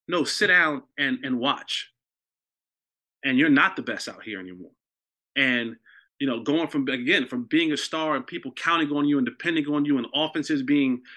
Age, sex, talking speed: 20-39, male, 195 wpm